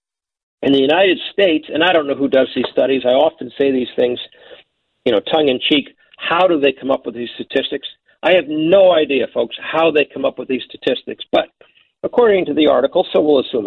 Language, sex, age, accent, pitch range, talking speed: English, male, 50-69, American, 140-185 Hz, 220 wpm